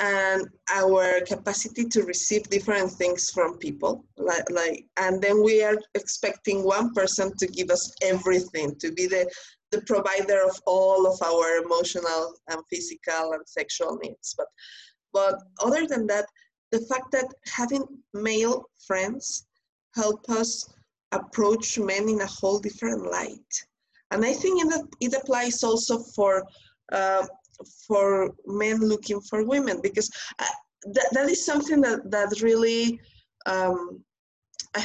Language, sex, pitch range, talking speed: English, female, 190-245 Hz, 145 wpm